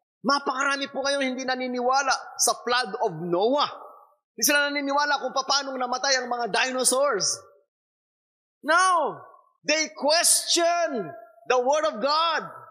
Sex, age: male, 20-39